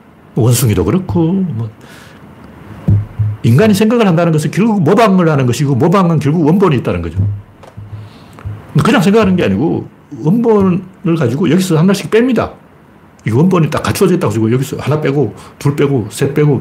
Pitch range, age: 105-175 Hz, 60-79